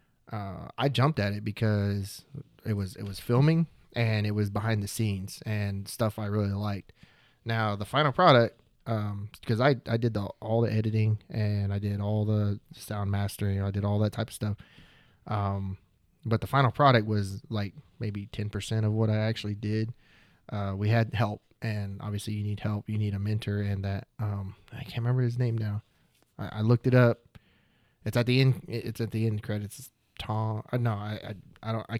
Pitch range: 100-115 Hz